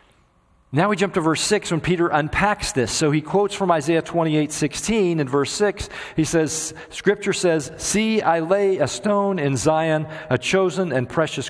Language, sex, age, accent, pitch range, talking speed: English, male, 40-59, American, 130-185 Hz, 190 wpm